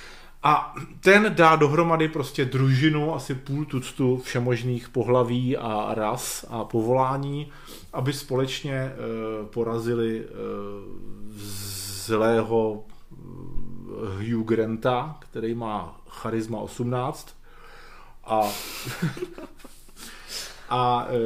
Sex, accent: male, native